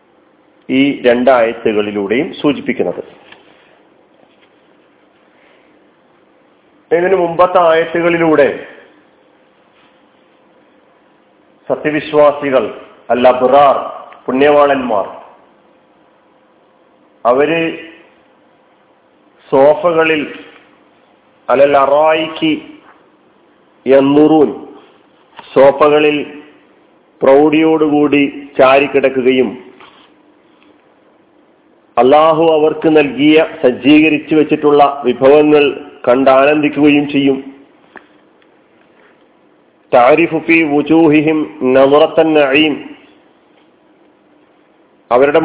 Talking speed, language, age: 35 wpm, Malayalam, 40-59